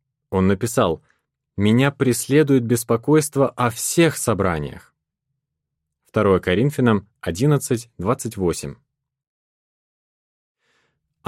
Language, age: Russian, 20-39